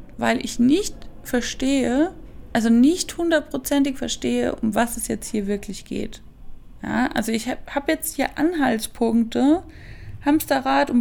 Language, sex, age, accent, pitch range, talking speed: German, female, 20-39, German, 225-280 Hz, 125 wpm